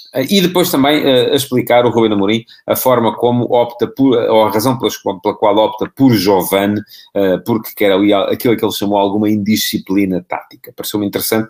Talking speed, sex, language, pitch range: 185 wpm, male, Portuguese, 100-130 Hz